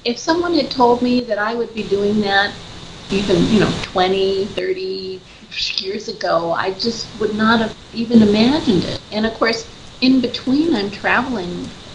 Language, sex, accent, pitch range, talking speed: English, female, American, 190-235 Hz, 165 wpm